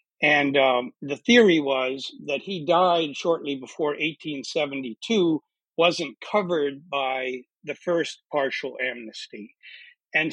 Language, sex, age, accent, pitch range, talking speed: English, male, 60-79, American, 145-185 Hz, 110 wpm